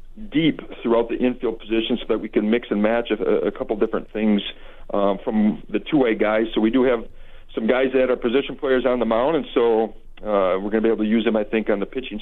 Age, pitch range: 50-69, 110-135 Hz